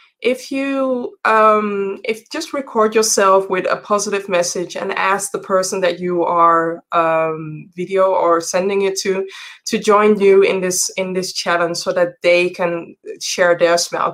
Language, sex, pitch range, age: English, female, 175-200 Hz, 20-39